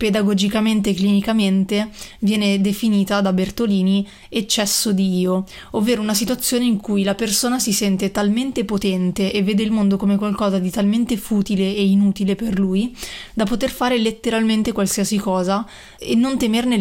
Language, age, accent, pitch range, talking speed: Italian, 20-39, native, 195-215 Hz, 155 wpm